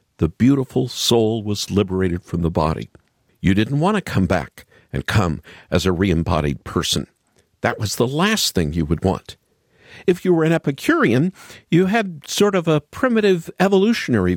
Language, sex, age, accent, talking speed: English, male, 50-69, American, 165 wpm